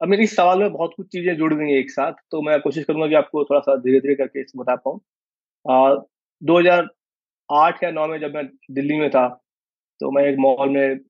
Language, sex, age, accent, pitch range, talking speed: Hindi, male, 20-39, native, 135-170 Hz, 215 wpm